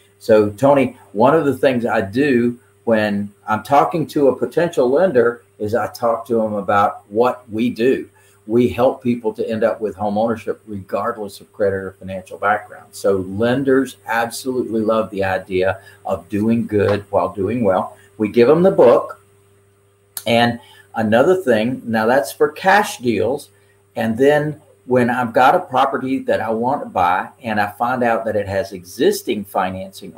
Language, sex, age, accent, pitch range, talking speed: English, male, 50-69, American, 100-135 Hz, 170 wpm